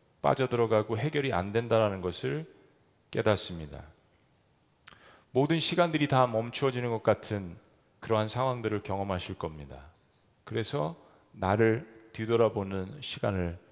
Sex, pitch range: male, 110-155 Hz